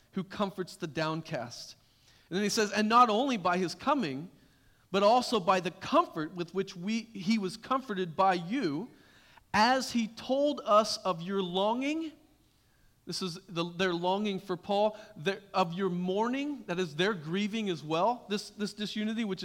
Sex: male